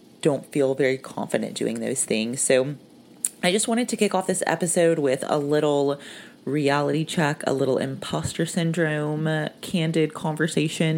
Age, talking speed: 30-49, 155 wpm